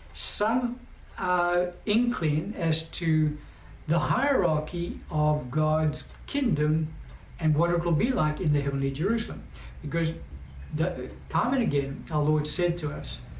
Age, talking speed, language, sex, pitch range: 60-79, 135 wpm, English, male, 135-170 Hz